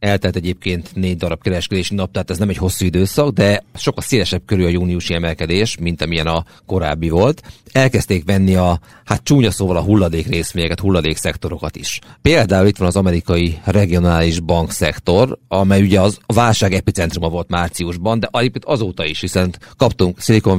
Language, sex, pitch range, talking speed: Hungarian, male, 90-110 Hz, 160 wpm